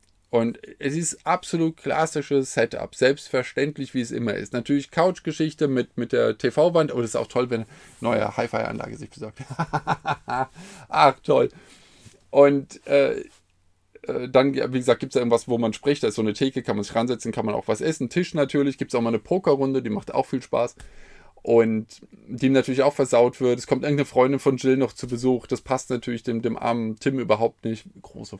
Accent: German